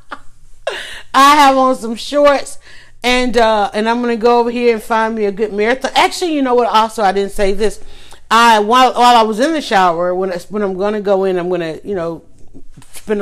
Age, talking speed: 40-59, 220 wpm